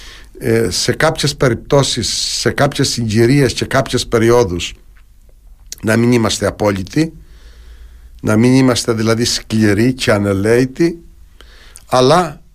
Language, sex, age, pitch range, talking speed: Greek, male, 60-79, 95-125 Hz, 100 wpm